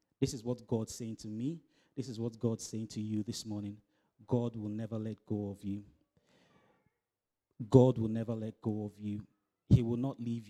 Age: 30-49